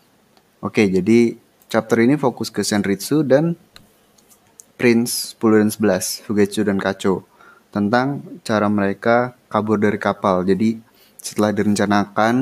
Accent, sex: native, male